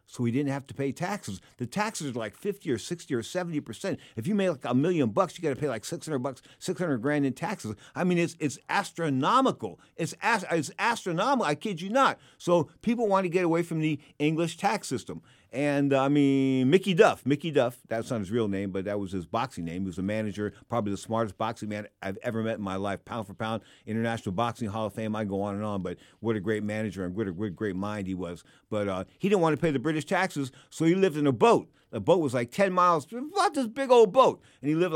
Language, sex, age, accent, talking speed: English, male, 50-69, American, 250 wpm